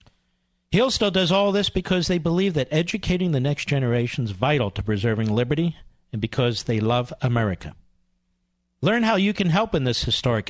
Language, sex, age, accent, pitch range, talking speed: English, male, 50-69, American, 105-165 Hz, 170 wpm